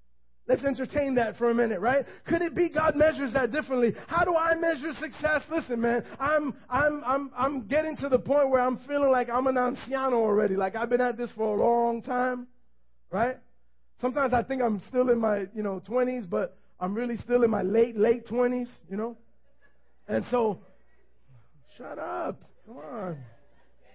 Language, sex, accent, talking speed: English, male, American, 185 wpm